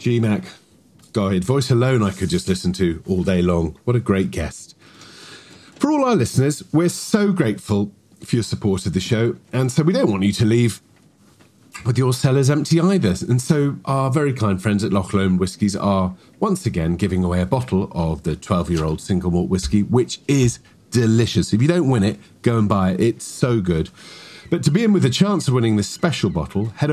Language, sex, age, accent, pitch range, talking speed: English, male, 40-59, British, 95-135 Hz, 205 wpm